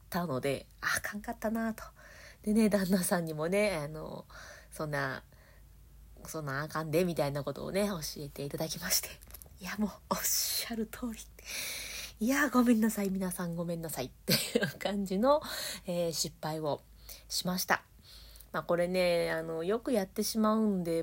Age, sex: 20-39, female